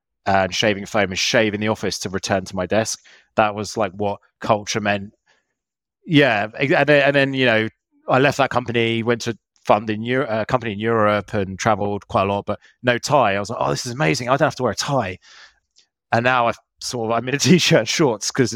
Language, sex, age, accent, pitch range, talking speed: English, male, 30-49, British, 95-120 Hz, 235 wpm